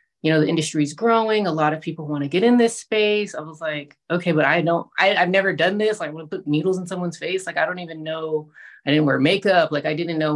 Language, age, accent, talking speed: English, 20-39, American, 290 wpm